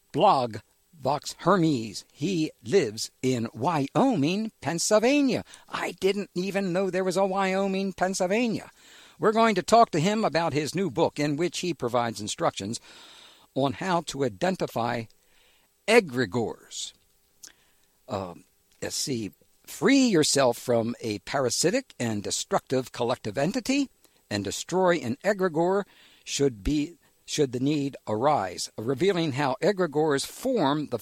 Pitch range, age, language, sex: 140-195 Hz, 60-79, English, male